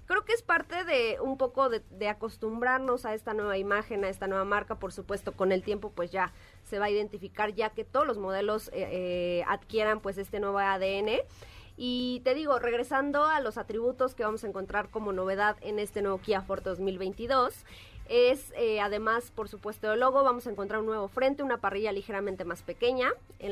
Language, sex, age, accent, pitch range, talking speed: Spanish, female, 20-39, Mexican, 200-250 Hz, 200 wpm